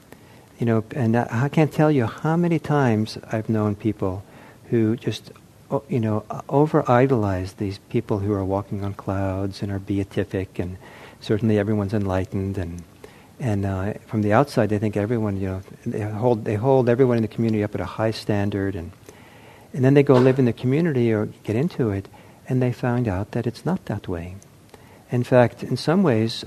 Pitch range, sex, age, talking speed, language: 105-130 Hz, male, 60-79, 190 wpm, English